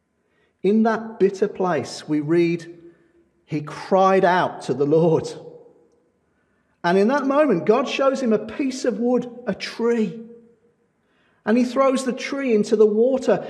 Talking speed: 145 wpm